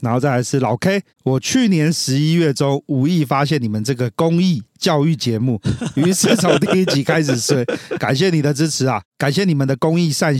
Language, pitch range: Chinese, 125-155 Hz